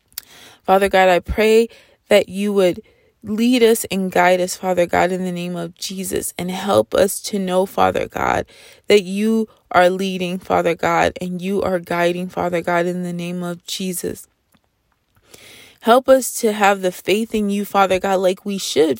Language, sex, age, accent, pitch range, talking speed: English, female, 20-39, American, 180-205 Hz, 175 wpm